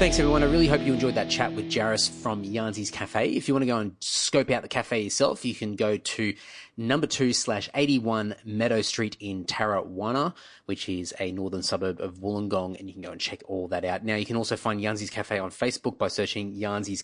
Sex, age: male, 30-49